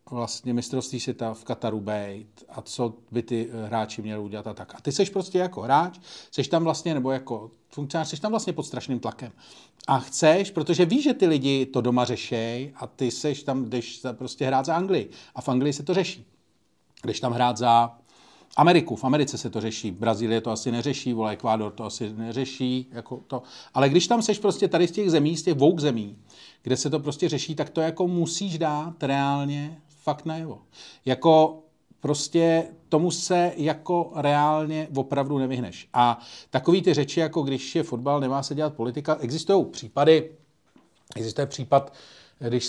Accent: native